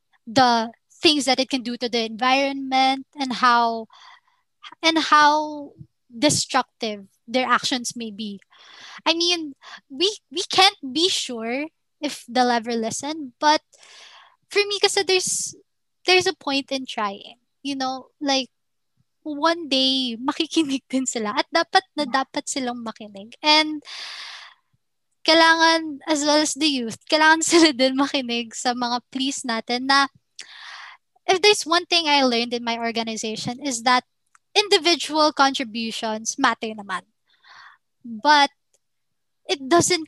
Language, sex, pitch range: Filipino, female, 240-300 Hz